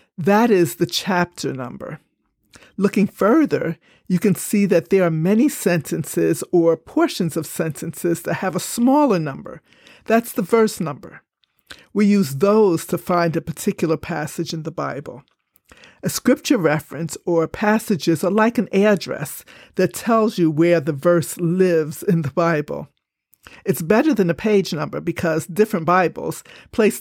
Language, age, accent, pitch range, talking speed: English, 50-69, American, 170-210 Hz, 150 wpm